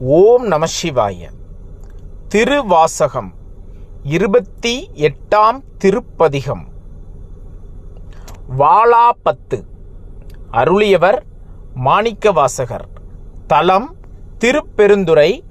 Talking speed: 45 wpm